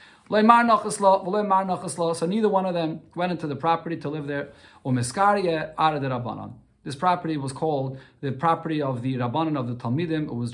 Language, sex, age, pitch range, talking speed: English, male, 40-59, 125-165 Hz, 150 wpm